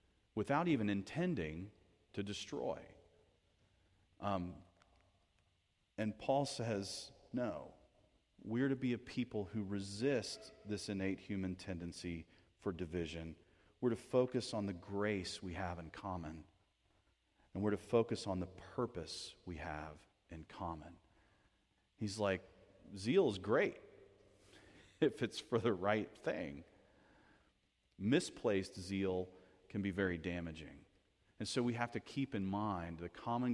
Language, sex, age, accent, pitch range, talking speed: English, male, 40-59, American, 85-105 Hz, 125 wpm